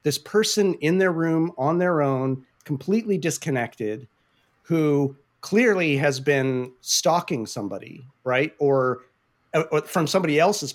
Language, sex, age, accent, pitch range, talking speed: English, male, 40-59, American, 135-180 Hz, 125 wpm